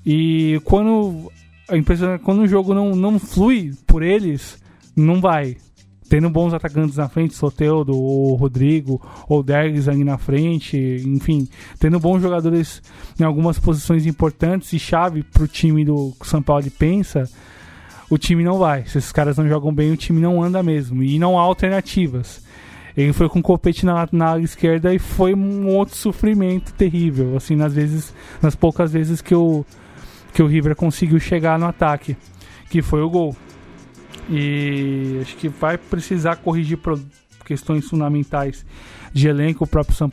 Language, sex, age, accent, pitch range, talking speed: Portuguese, male, 20-39, Brazilian, 140-170 Hz, 160 wpm